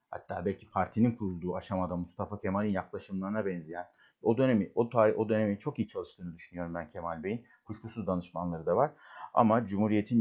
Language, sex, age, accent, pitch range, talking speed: Turkish, male, 50-69, native, 95-110 Hz, 165 wpm